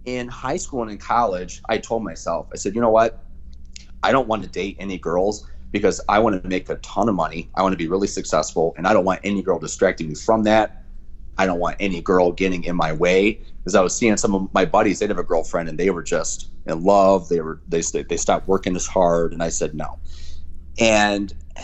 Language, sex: English, male